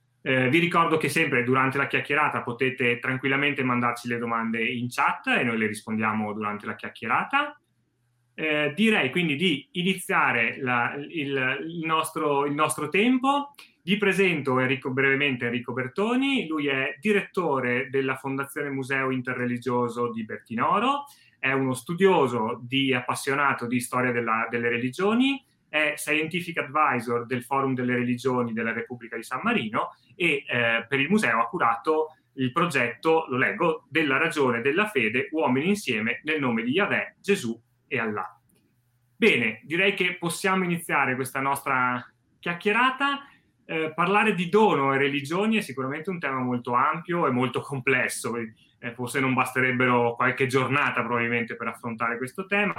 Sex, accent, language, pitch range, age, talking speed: male, native, Italian, 120-165 Hz, 30-49, 145 wpm